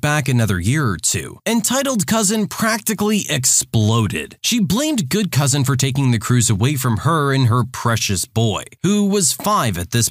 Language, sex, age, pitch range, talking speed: English, male, 20-39, 125-200 Hz, 170 wpm